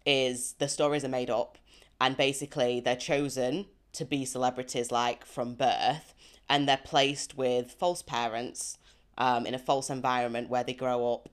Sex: female